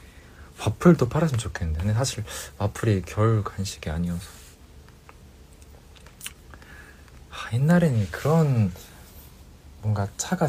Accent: native